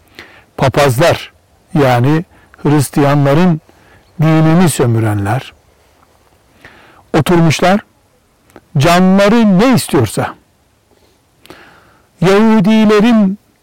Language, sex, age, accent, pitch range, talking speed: Turkish, male, 60-79, native, 140-195 Hz, 45 wpm